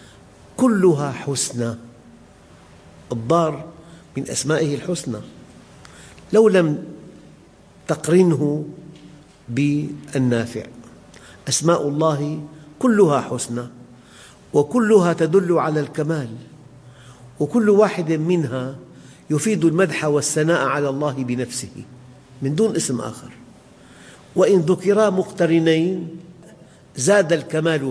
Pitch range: 120-160 Hz